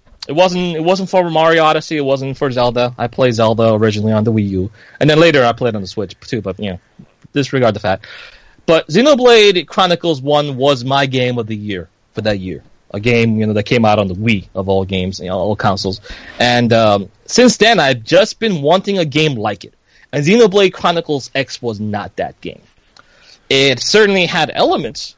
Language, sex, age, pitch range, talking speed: English, male, 30-49, 110-150 Hz, 210 wpm